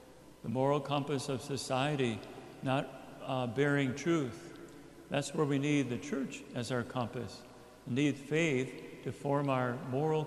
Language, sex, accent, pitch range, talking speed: English, male, American, 125-145 Hz, 145 wpm